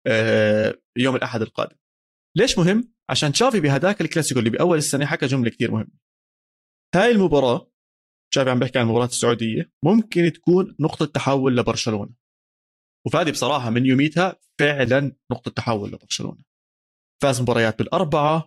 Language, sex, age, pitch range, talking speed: Arabic, male, 30-49, 115-170 Hz, 130 wpm